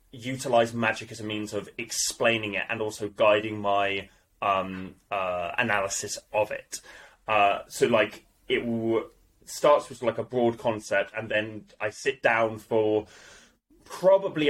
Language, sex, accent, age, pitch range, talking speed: English, male, British, 20-39, 105-135 Hz, 145 wpm